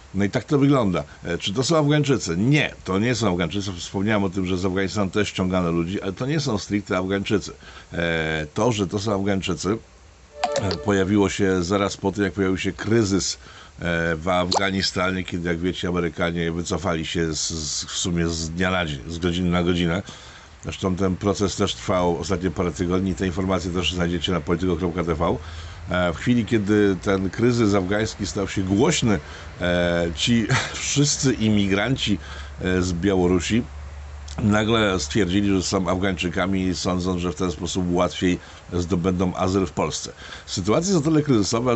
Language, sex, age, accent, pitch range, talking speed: Polish, male, 50-69, native, 85-100 Hz, 155 wpm